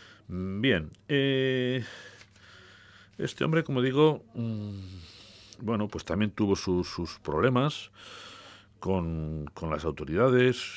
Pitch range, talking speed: 80-105 Hz, 100 wpm